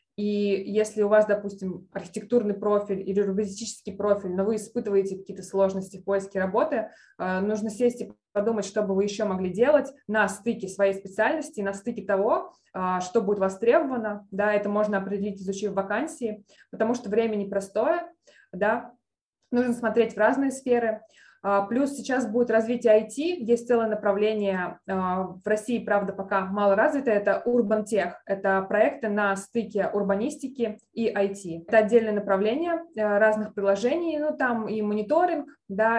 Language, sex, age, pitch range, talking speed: Russian, female, 20-39, 200-235 Hz, 145 wpm